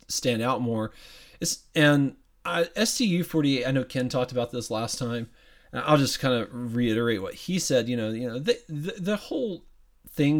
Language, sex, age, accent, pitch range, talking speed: English, male, 30-49, American, 120-160 Hz, 190 wpm